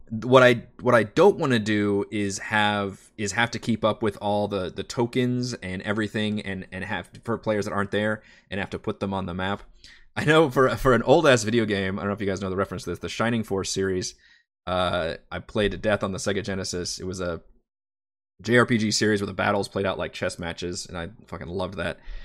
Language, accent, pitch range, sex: English, American, 95-110 Hz, male